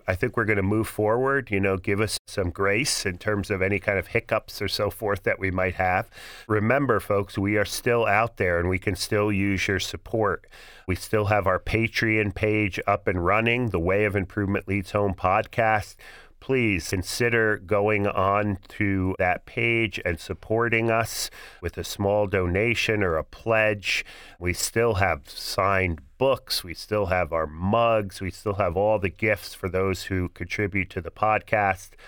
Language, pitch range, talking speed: English, 95-110 Hz, 180 wpm